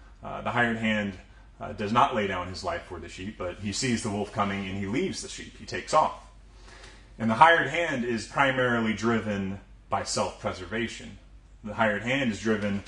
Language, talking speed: English, 195 wpm